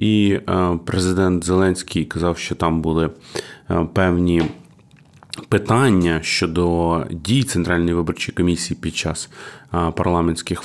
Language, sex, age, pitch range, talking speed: Ukrainian, male, 30-49, 90-110 Hz, 95 wpm